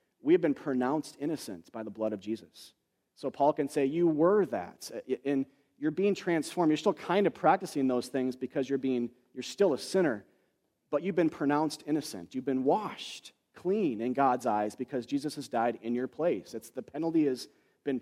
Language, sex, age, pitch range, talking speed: English, male, 40-59, 115-145 Hz, 195 wpm